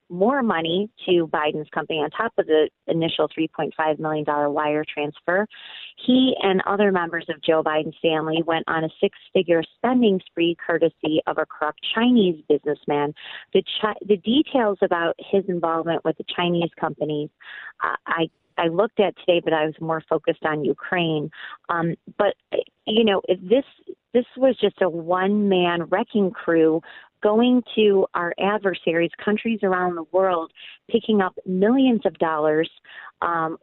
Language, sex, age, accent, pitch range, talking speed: English, female, 30-49, American, 160-205 Hz, 150 wpm